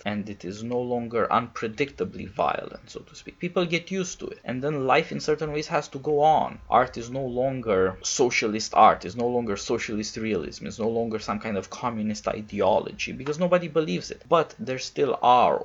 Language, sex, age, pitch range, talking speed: English, male, 20-39, 110-150 Hz, 200 wpm